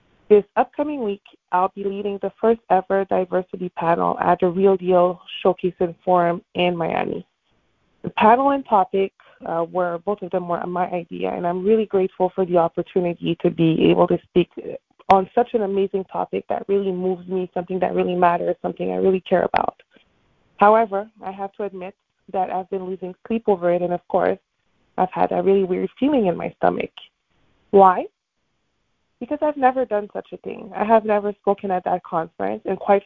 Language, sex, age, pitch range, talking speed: English, female, 20-39, 180-205 Hz, 185 wpm